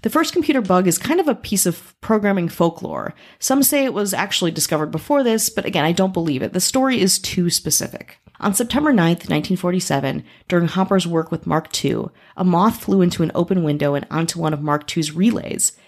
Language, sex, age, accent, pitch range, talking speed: English, female, 30-49, American, 155-200 Hz, 210 wpm